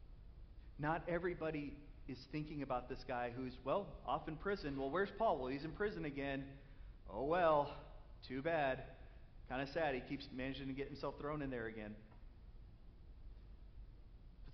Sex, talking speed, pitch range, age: male, 155 wpm, 110-140 Hz, 30-49